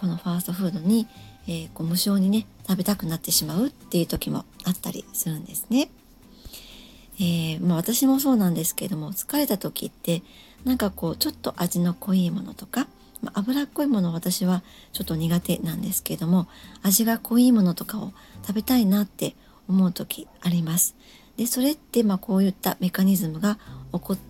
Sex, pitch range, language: male, 180-235 Hz, Japanese